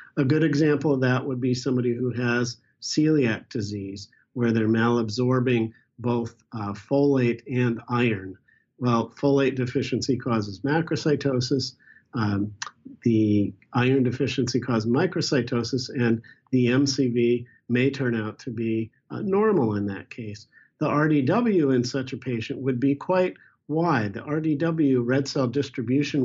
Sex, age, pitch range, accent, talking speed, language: male, 50-69, 115-145 Hz, American, 135 wpm, English